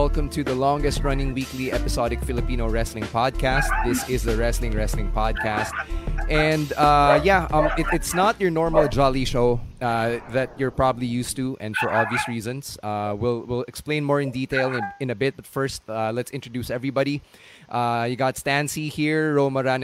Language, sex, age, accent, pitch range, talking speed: English, male, 20-39, Filipino, 115-140 Hz, 180 wpm